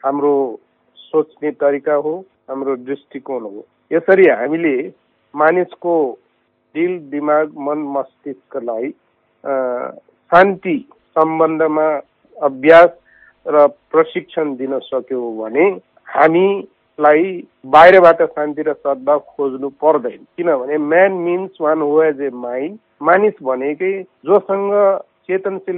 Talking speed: 90 wpm